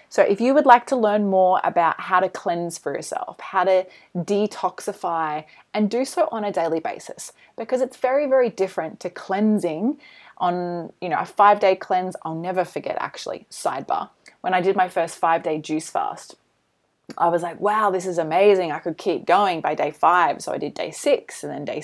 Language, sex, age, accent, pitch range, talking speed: English, female, 20-39, Australian, 170-225 Hz, 205 wpm